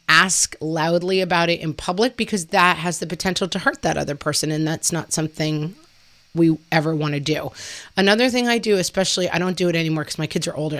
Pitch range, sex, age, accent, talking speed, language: 160-200 Hz, female, 30-49, American, 220 wpm, English